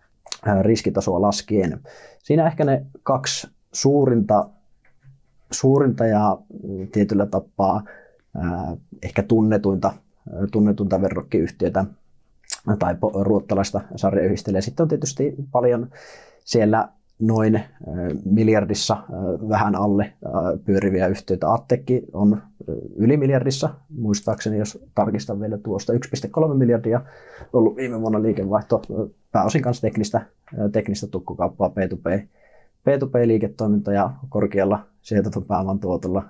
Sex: male